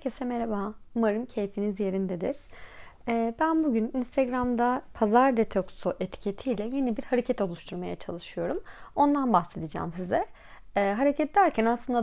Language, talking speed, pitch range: Turkish, 120 wpm, 210-275 Hz